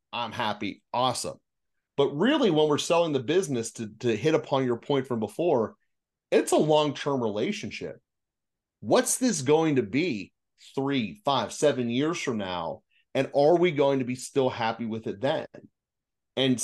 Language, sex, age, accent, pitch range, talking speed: English, male, 30-49, American, 115-145 Hz, 160 wpm